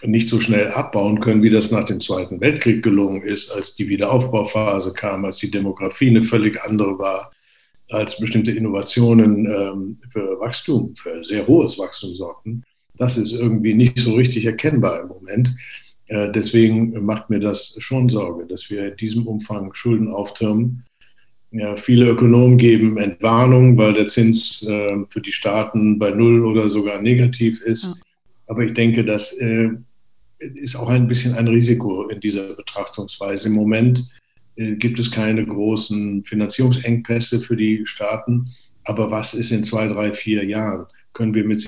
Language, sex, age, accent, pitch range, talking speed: German, male, 60-79, German, 105-120 Hz, 155 wpm